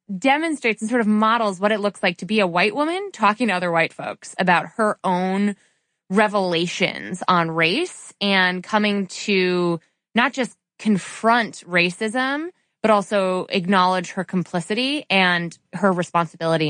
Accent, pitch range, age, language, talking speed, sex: American, 180-235 Hz, 20-39, English, 145 wpm, female